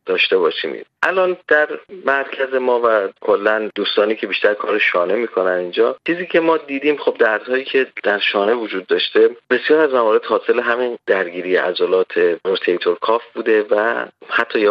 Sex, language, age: male, Persian, 30-49